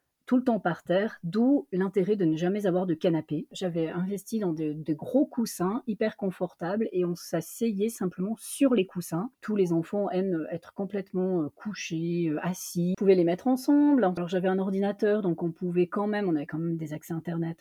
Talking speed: 200 wpm